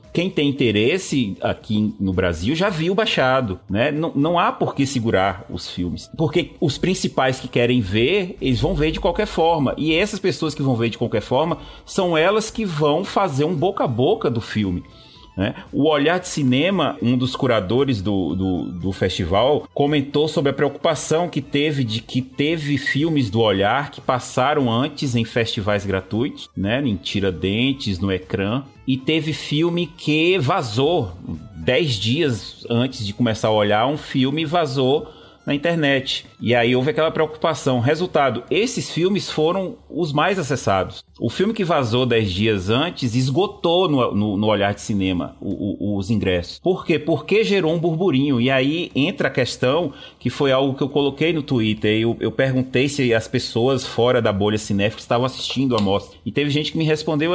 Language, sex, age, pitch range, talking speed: English, male, 30-49, 115-160 Hz, 180 wpm